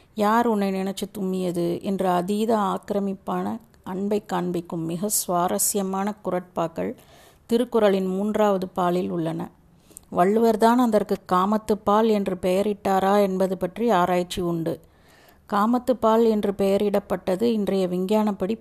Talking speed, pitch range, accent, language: 105 wpm, 185-210 Hz, native, Tamil